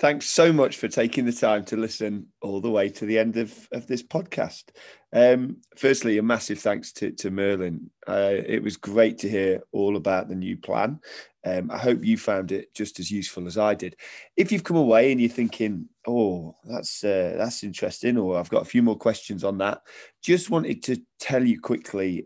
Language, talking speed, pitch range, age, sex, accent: English, 210 wpm, 95-125 Hz, 20-39, male, British